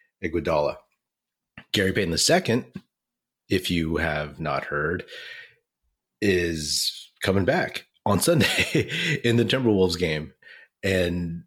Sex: male